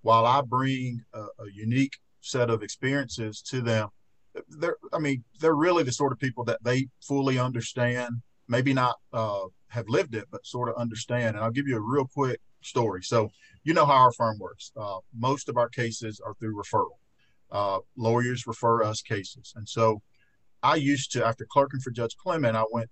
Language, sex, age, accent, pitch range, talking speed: English, male, 50-69, American, 110-130 Hz, 195 wpm